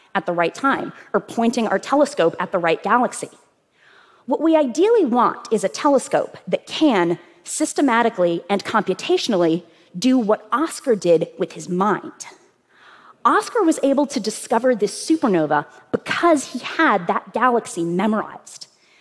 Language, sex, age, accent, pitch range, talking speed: English, female, 30-49, American, 195-300 Hz, 140 wpm